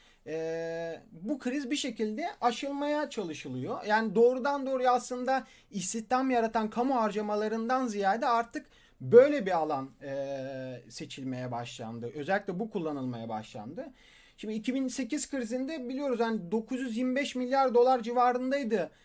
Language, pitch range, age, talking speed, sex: Turkish, 170-260 Hz, 40-59, 115 wpm, male